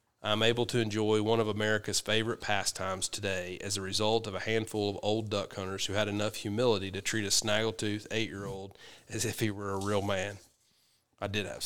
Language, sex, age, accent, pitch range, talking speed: English, male, 30-49, American, 100-110 Hz, 200 wpm